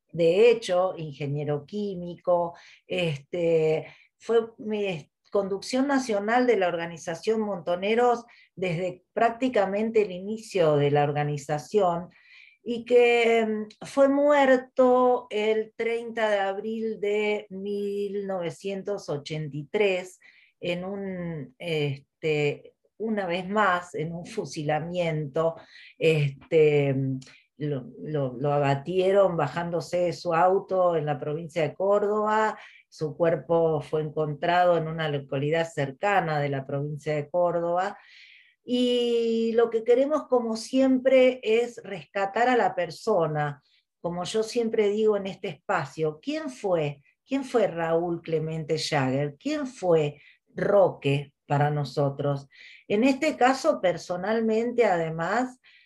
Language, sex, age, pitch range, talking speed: Spanish, female, 40-59, 155-220 Hz, 110 wpm